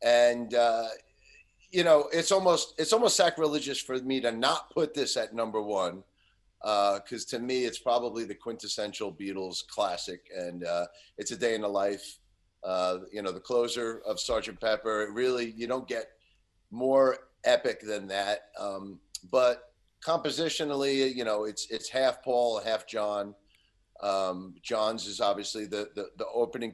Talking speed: 160 wpm